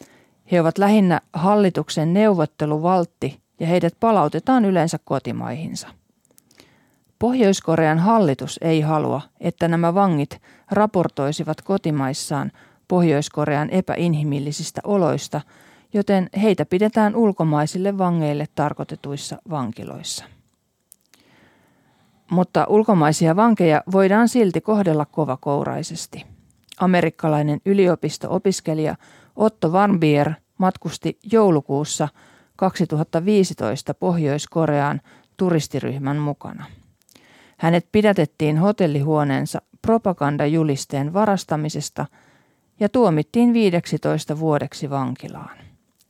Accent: native